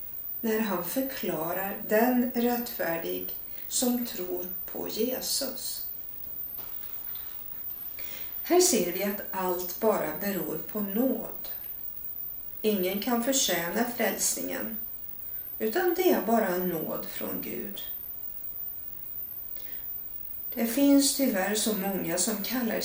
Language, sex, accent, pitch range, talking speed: Swedish, female, native, 195-250 Hz, 95 wpm